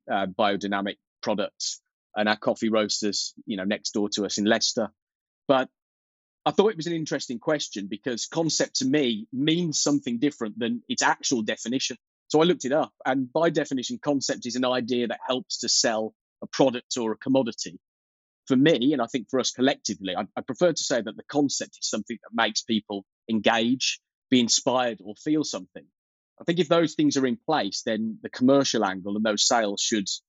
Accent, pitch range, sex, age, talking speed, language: British, 105-145 Hz, male, 30-49, 195 wpm, English